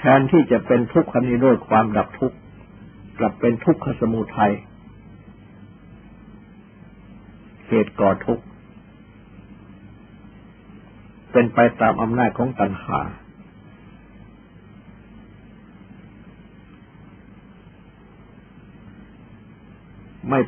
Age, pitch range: 60-79, 105-125 Hz